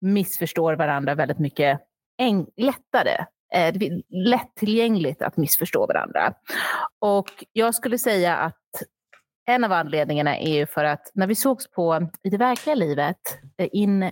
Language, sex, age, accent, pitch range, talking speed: Swedish, female, 30-49, native, 160-210 Hz, 140 wpm